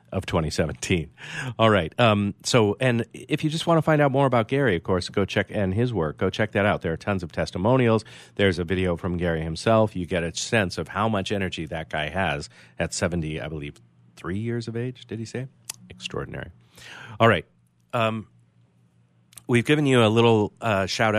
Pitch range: 85-110 Hz